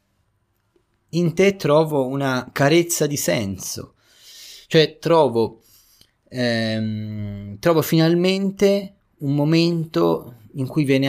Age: 20-39